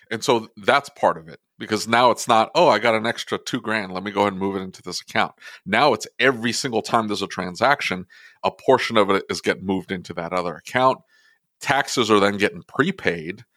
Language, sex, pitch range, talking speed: English, male, 95-110 Hz, 225 wpm